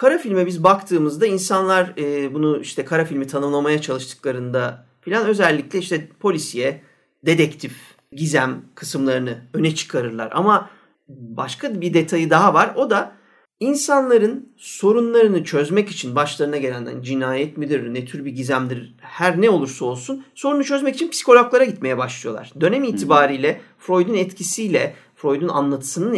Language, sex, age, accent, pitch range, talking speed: Turkish, male, 40-59, native, 140-200 Hz, 135 wpm